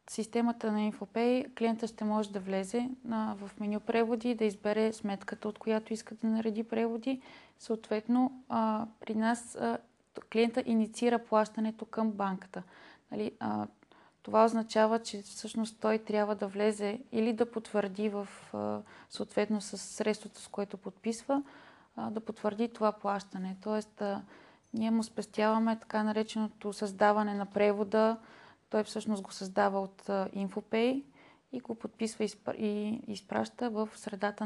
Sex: female